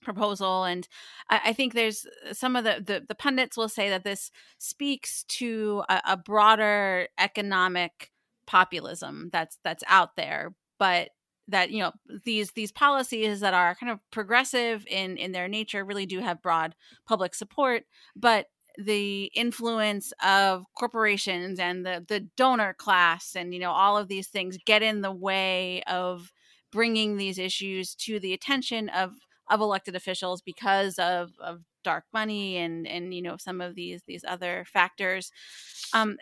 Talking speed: 160 wpm